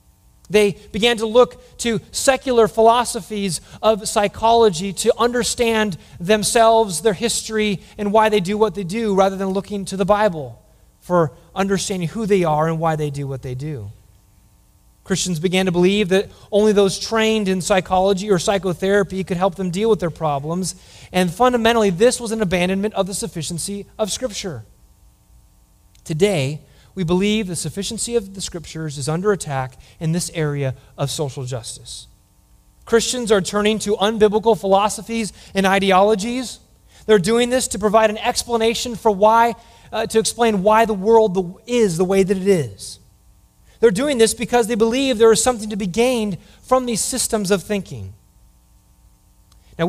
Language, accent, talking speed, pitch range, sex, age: English, American, 160 wpm, 170-220 Hz, male, 30-49